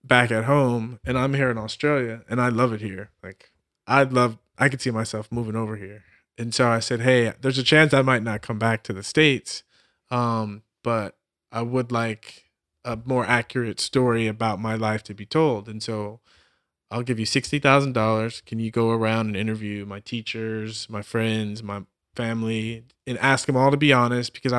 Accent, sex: American, male